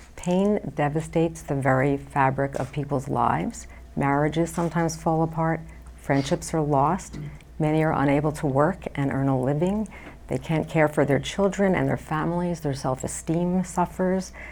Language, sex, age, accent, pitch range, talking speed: English, female, 50-69, American, 140-165 Hz, 150 wpm